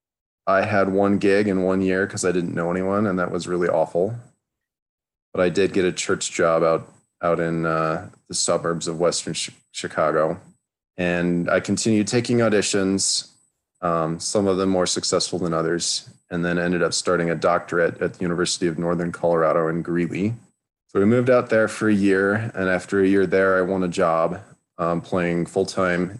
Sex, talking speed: male, 190 wpm